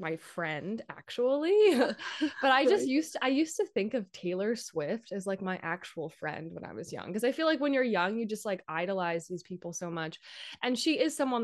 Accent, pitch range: American, 175-245 Hz